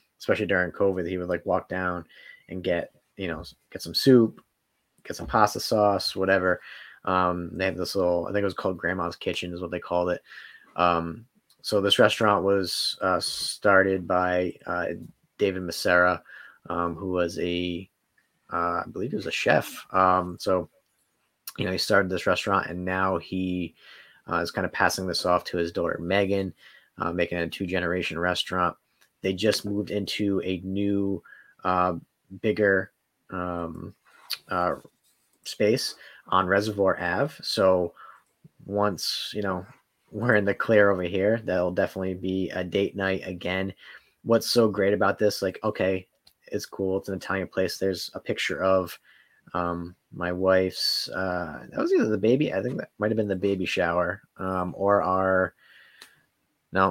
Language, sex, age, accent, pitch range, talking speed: English, male, 30-49, American, 90-100 Hz, 165 wpm